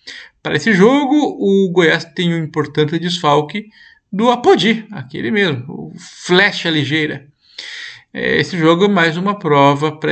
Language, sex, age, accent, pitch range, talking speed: Portuguese, male, 50-69, Brazilian, 145-200 Hz, 135 wpm